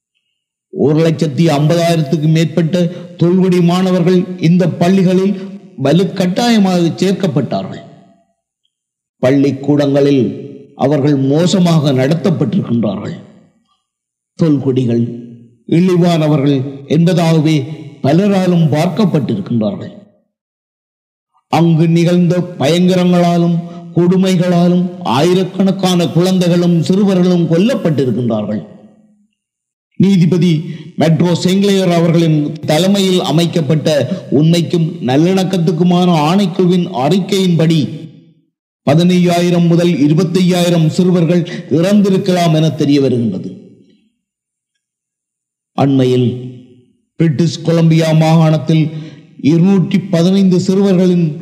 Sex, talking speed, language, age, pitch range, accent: male, 60 wpm, Tamil, 50-69, 155-185 Hz, native